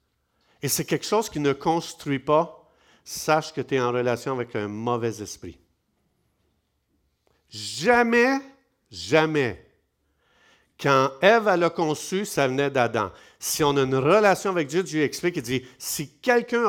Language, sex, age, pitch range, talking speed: French, male, 50-69, 125-190 Hz, 145 wpm